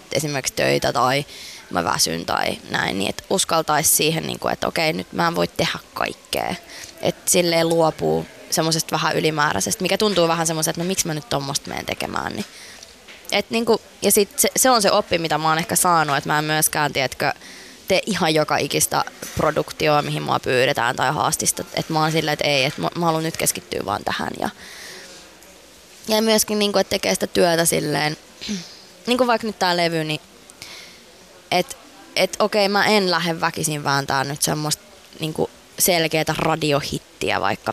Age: 20-39